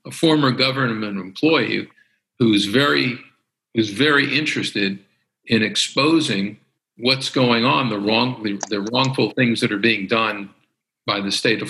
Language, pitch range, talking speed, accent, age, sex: English, 105-135 Hz, 145 wpm, American, 50-69, male